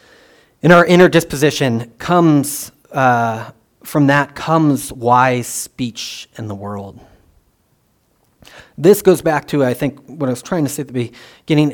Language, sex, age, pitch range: English, male, 30-49, 115-155 Hz